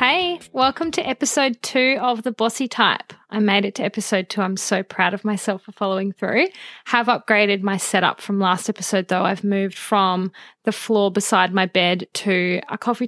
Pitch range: 190-225 Hz